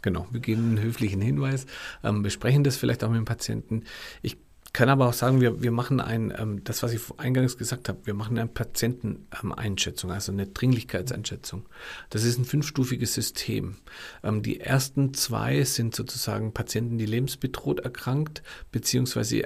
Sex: male